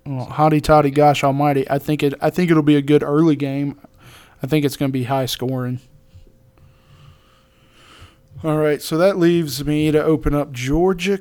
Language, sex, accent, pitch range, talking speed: English, male, American, 130-155 Hz, 175 wpm